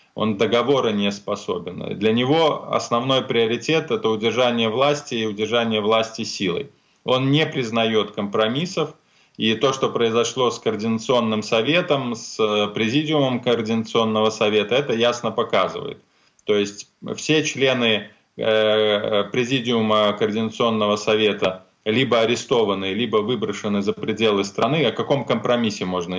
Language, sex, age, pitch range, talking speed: Ukrainian, male, 20-39, 105-125 Hz, 115 wpm